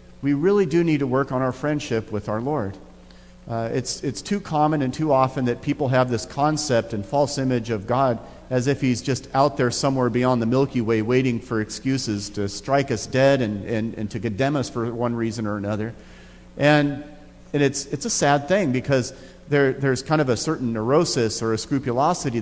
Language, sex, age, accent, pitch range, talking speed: English, male, 40-59, American, 115-150 Hz, 205 wpm